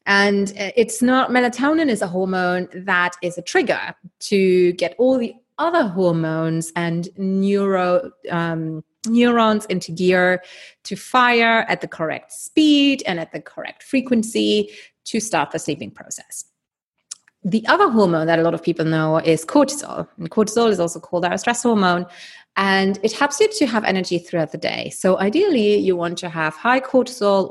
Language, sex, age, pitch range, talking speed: English, female, 30-49, 165-225 Hz, 165 wpm